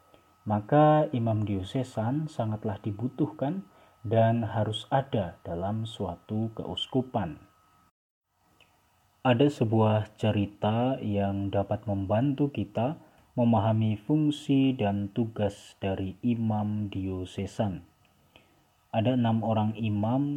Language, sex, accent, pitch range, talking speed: Indonesian, male, native, 100-130 Hz, 85 wpm